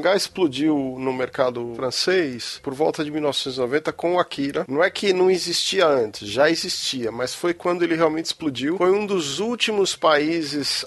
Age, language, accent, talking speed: 40-59, Portuguese, Brazilian, 175 wpm